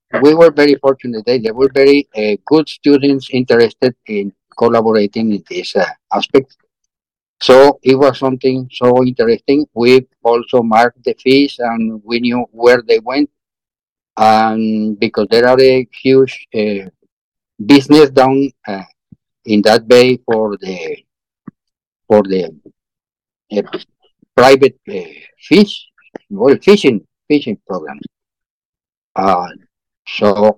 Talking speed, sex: 125 wpm, male